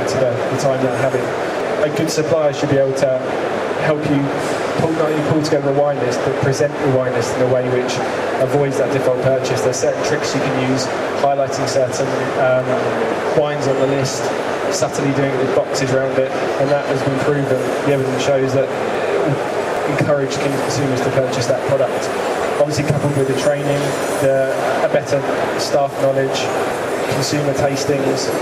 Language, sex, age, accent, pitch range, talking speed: English, male, 20-39, British, 130-145 Hz, 175 wpm